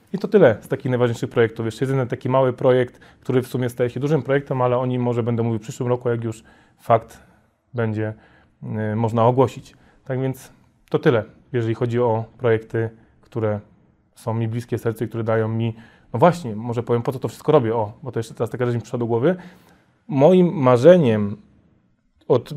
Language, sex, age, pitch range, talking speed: Polish, male, 30-49, 120-145 Hz, 195 wpm